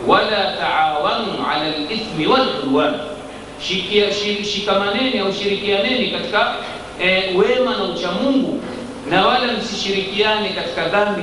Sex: male